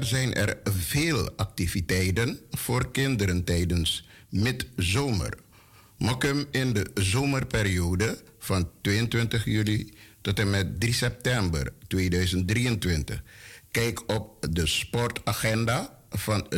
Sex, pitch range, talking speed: male, 100-120 Hz, 95 wpm